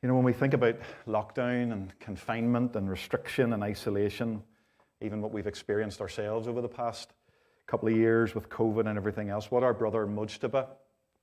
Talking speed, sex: 175 wpm, male